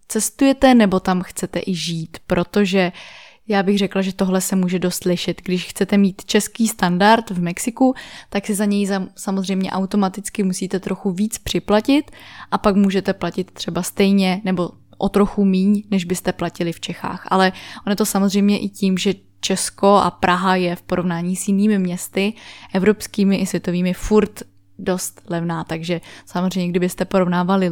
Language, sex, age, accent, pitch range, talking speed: Czech, female, 20-39, native, 180-215 Hz, 160 wpm